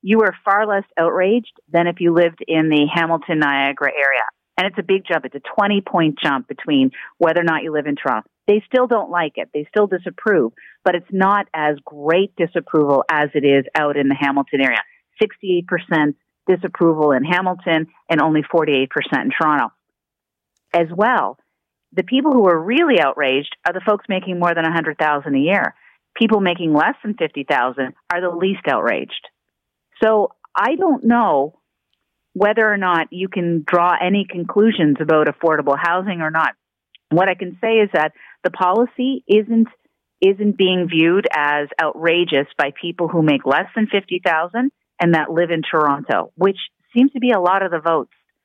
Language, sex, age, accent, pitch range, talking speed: English, female, 40-59, American, 150-195 Hz, 175 wpm